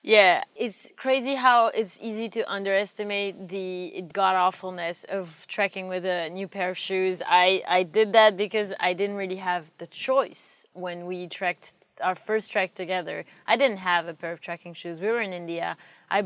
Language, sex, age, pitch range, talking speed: English, female, 20-39, 180-205 Hz, 180 wpm